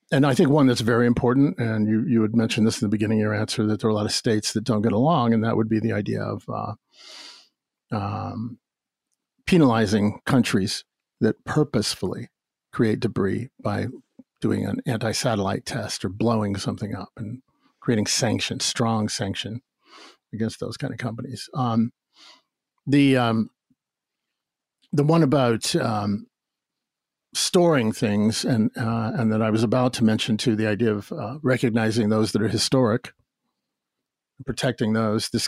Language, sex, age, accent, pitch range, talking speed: English, male, 50-69, American, 110-130 Hz, 160 wpm